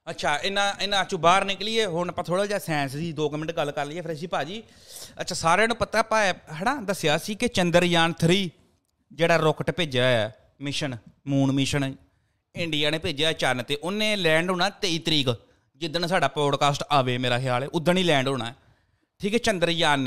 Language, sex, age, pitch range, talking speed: Punjabi, male, 30-49, 145-195 Hz, 190 wpm